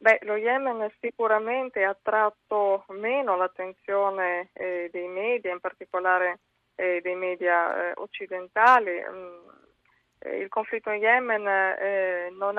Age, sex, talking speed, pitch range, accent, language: 20-39, female, 125 wpm, 185-215 Hz, native, Italian